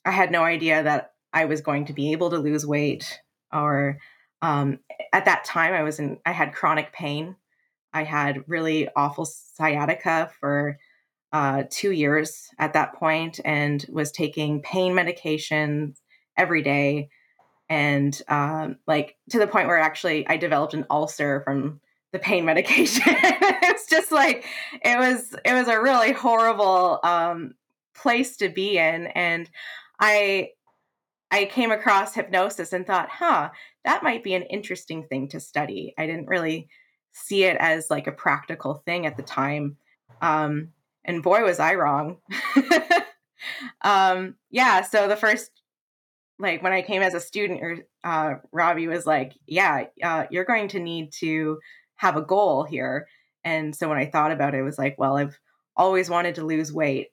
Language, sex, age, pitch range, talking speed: English, female, 20-39, 150-195 Hz, 165 wpm